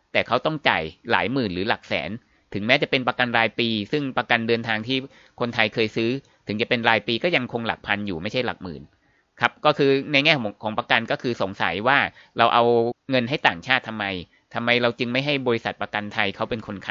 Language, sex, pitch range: Thai, male, 110-135 Hz